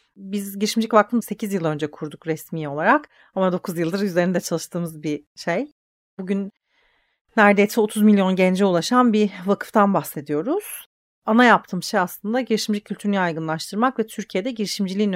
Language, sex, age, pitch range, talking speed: Turkish, female, 40-59, 170-210 Hz, 140 wpm